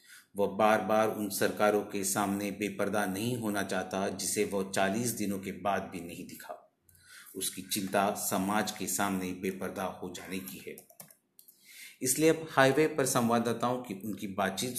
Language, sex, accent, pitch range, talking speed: Hindi, male, native, 100-120 Hz, 155 wpm